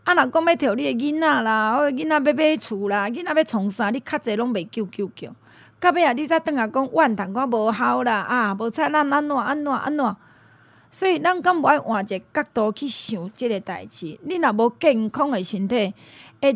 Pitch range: 215-300 Hz